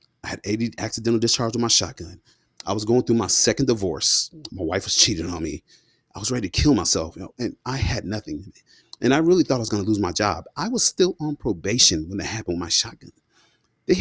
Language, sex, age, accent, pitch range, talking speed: English, male, 30-49, American, 105-135 Hz, 235 wpm